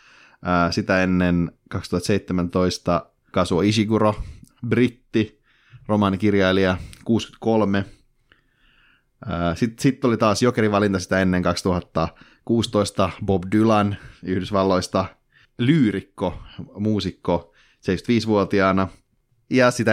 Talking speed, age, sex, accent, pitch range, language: 70 wpm, 30-49, male, native, 90-105 Hz, Finnish